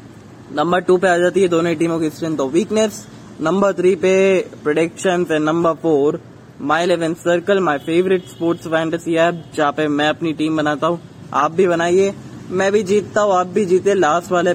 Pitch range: 150-185 Hz